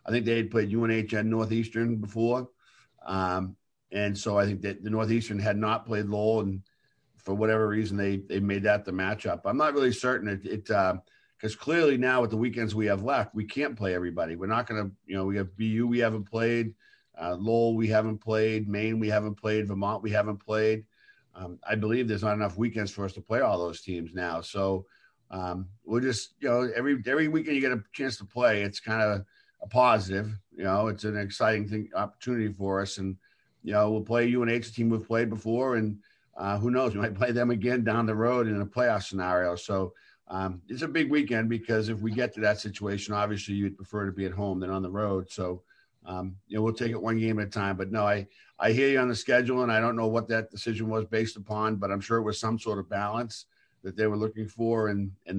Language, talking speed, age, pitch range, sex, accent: English, 235 wpm, 50-69, 100-115 Hz, male, American